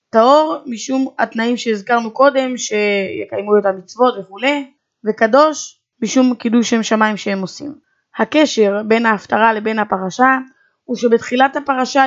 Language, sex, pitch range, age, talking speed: Hebrew, female, 220-265 Hz, 20-39, 120 wpm